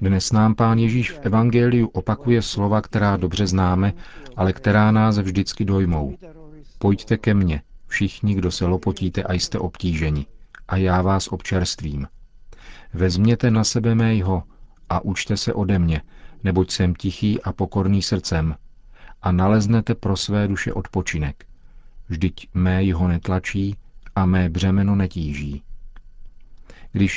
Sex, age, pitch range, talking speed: male, 40-59, 95-110 Hz, 130 wpm